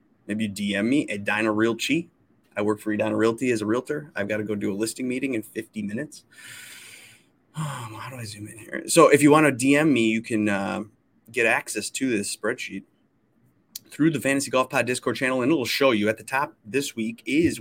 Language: English